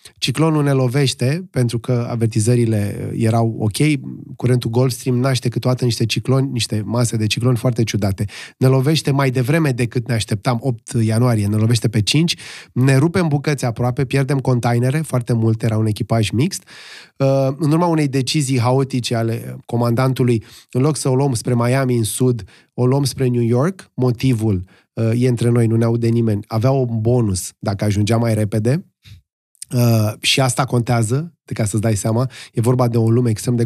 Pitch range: 115-145 Hz